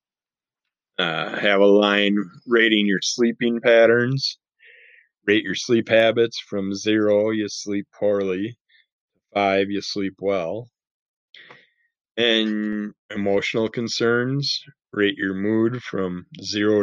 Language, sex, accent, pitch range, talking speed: English, male, American, 95-115 Hz, 105 wpm